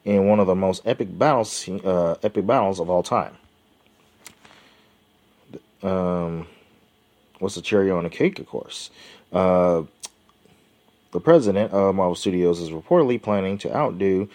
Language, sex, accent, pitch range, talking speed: English, male, American, 90-100 Hz, 140 wpm